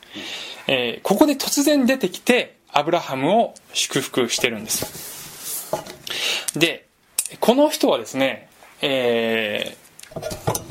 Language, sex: Japanese, male